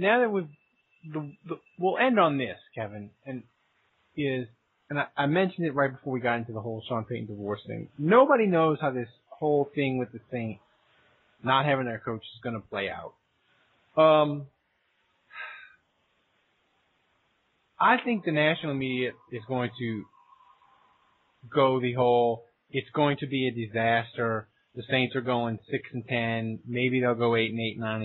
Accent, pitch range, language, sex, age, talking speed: American, 120-175 Hz, English, male, 30-49, 165 wpm